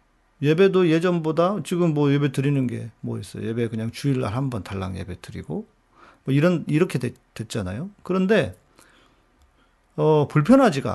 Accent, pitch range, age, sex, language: native, 125-175 Hz, 40-59, male, Korean